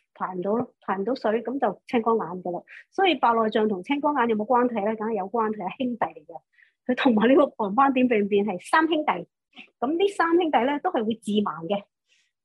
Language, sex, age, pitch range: Chinese, male, 30-49, 200-260 Hz